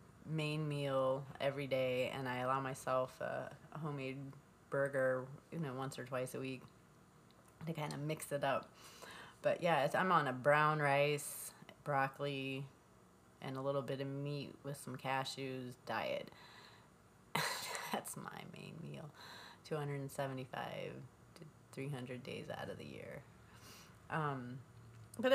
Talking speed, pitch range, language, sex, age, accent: 135 wpm, 130-145 Hz, English, female, 30-49, American